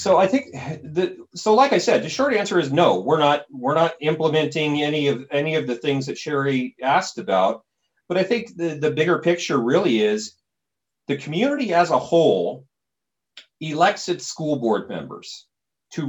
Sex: male